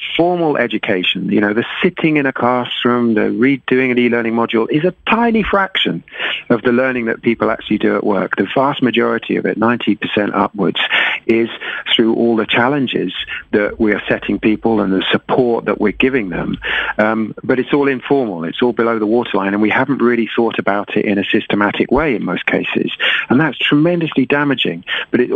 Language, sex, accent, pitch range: Dutch, male, British, 105-135 Hz